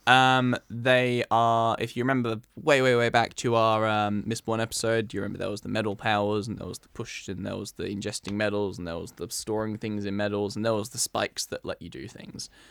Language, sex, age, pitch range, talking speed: English, male, 10-29, 100-115 Hz, 245 wpm